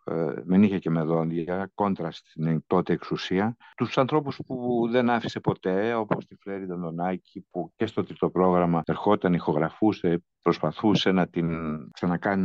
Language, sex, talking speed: Greek, male, 145 wpm